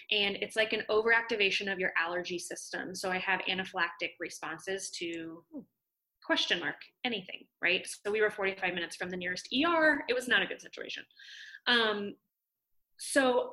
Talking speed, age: 160 wpm, 20-39